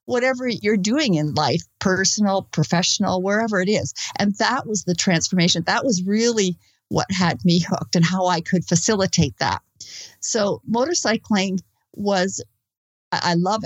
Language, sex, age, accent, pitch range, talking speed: English, female, 50-69, American, 165-200 Hz, 145 wpm